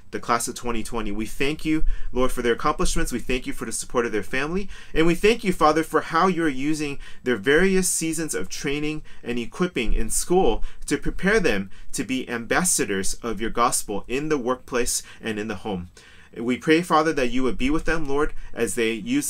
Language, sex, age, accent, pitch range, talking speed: English, male, 30-49, American, 115-155 Hz, 210 wpm